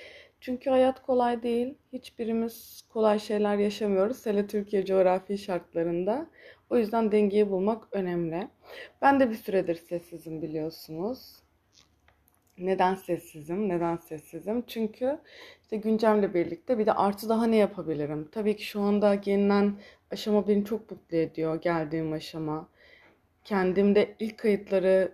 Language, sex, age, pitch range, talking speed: Turkish, female, 30-49, 185-240 Hz, 125 wpm